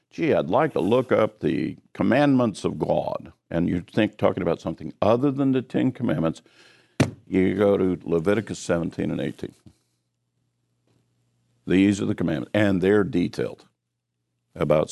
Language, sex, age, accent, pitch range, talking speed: English, male, 50-69, American, 80-115 Hz, 145 wpm